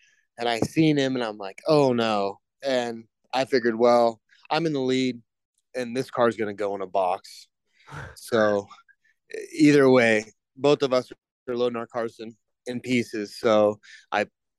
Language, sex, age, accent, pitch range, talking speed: English, male, 30-49, American, 115-135 Hz, 165 wpm